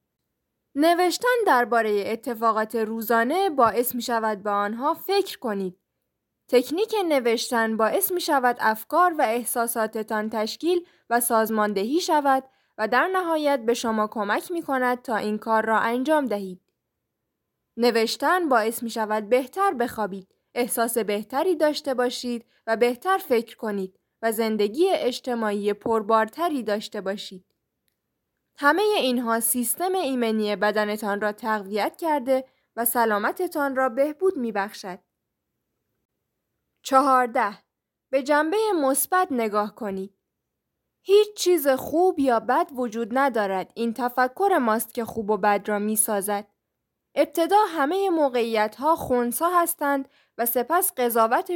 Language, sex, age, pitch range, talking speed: Persian, female, 10-29, 220-295 Hz, 120 wpm